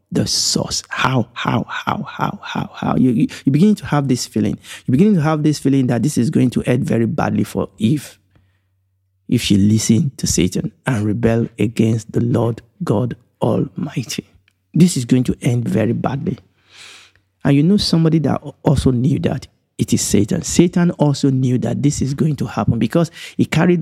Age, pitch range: 50-69, 105-145 Hz